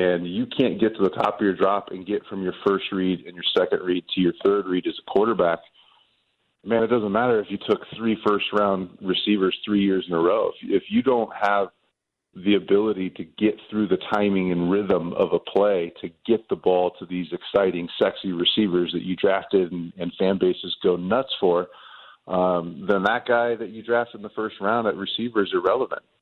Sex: male